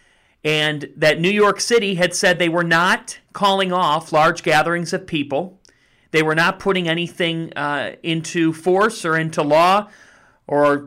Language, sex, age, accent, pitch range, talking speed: English, male, 40-59, American, 150-195 Hz, 155 wpm